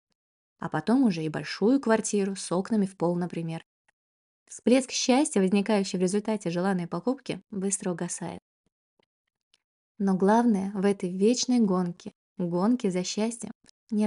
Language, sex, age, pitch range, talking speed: Russian, female, 20-39, 185-230 Hz, 130 wpm